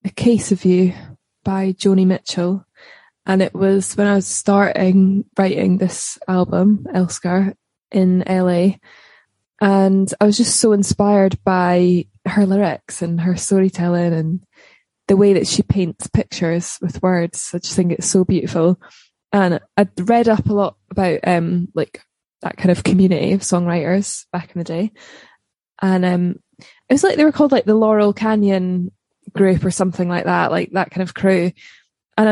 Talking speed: 165 wpm